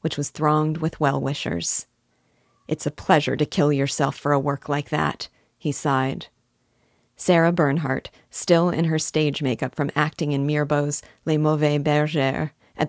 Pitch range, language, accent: 140-165 Hz, English, American